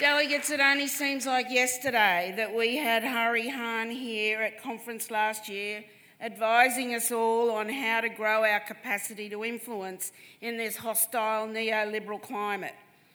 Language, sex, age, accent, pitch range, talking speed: English, female, 50-69, Australian, 215-245 Hz, 145 wpm